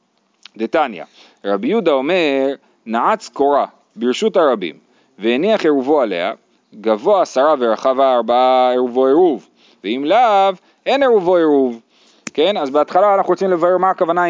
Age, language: 30-49, Hebrew